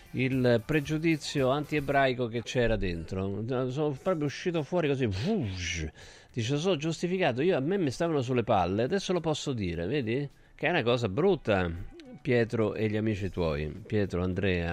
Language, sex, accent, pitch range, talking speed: Italian, male, native, 90-135 Hz, 165 wpm